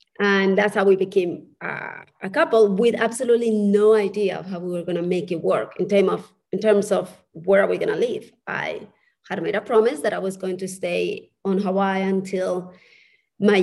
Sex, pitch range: female, 190-225 Hz